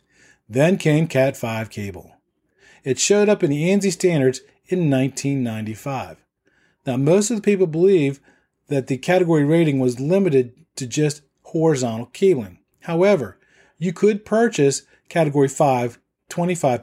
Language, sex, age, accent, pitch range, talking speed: English, male, 40-59, American, 130-175 Hz, 125 wpm